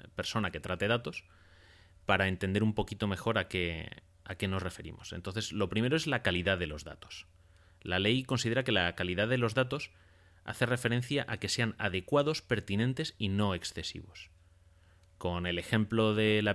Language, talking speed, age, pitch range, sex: Spanish, 170 wpm, 30-49, 90-110 Hz, male